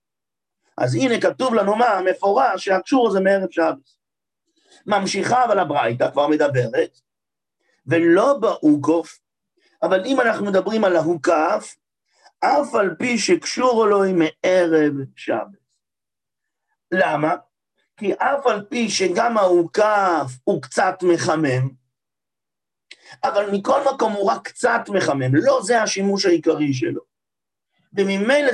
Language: English